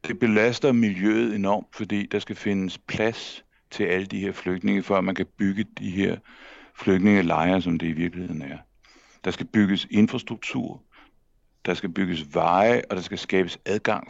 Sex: male